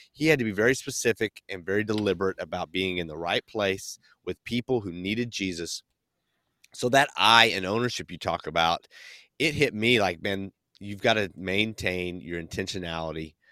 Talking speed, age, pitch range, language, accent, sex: 175 wpm, 30-49, 90-115 Hz, English, American, male